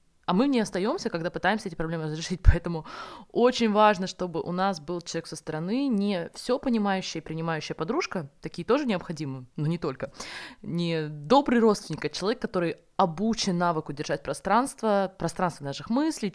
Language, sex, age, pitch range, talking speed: Russian, female, 20-39, 160-215 Hz, 160 wpm